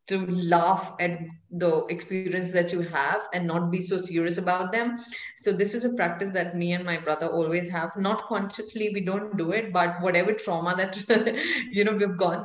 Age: 20-39